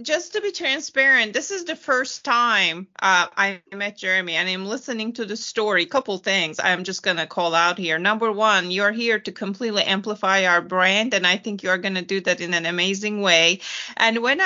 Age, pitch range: 30-49, 195-245 Hz